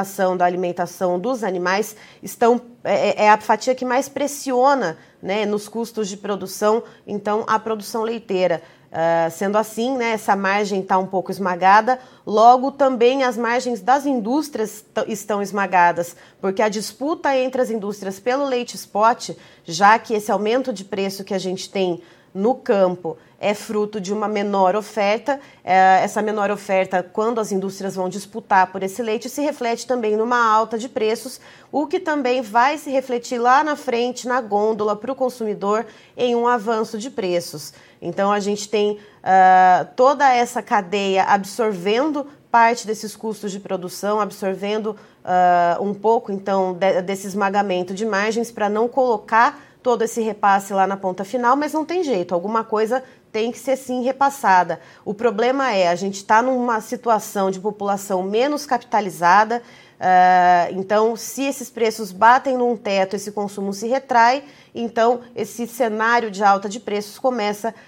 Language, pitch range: Portuguese, 195-240 Hz